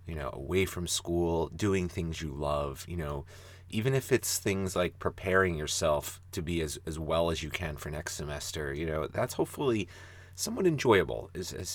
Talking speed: 190 wpm